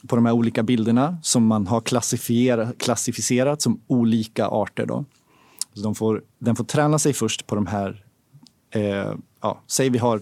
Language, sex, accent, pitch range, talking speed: Swedish, male, native, 110-135 Hz, 170 wpm